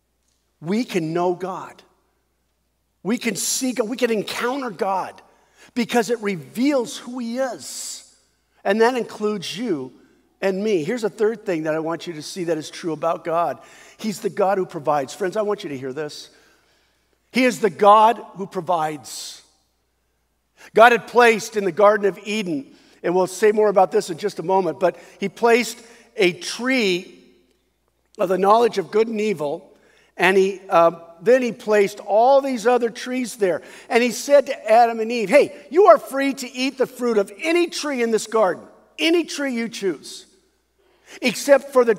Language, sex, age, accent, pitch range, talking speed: English, male, 50-69, American, 180-240 Hz, 180 wpm